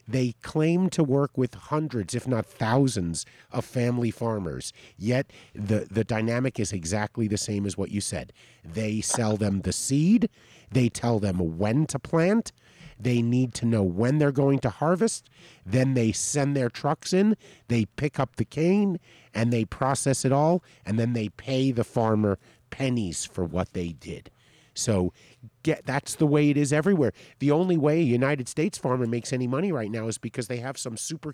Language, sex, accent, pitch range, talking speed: English, male, American, 115-150 Hz, 185 wpm